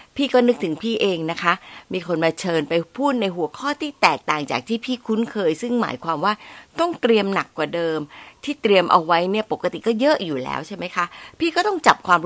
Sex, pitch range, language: female, 160-230 Hz, Thai